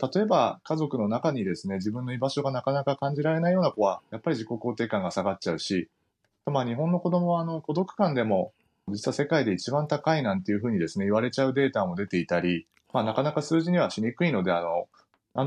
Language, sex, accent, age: Japanese, male, native, 30-49